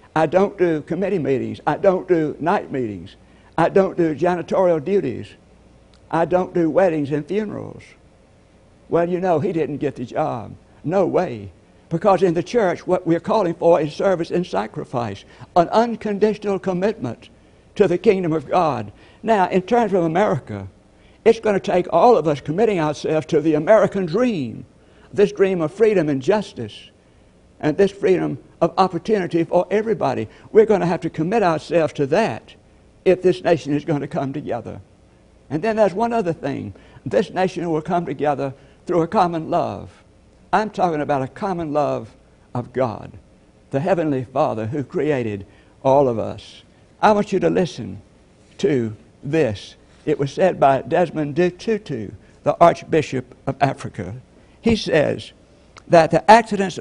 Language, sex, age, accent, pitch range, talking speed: English, male, 60-79, American, 130-185 Hz, 160 wpm